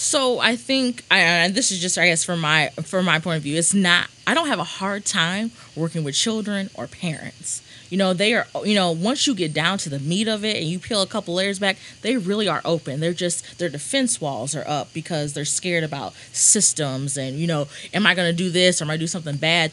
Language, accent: English, American